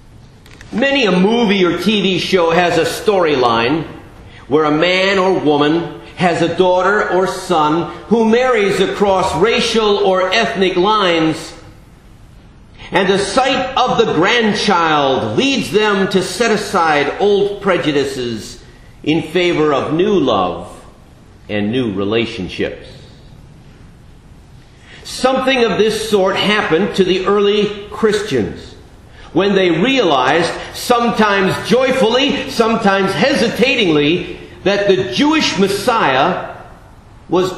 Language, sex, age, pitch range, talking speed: English, male, 50-69, 170-220 Hz, 110 wpm